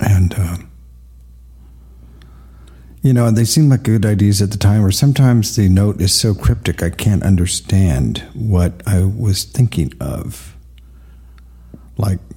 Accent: American